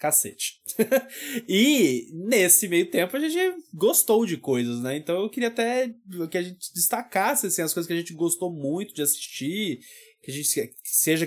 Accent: Brazilian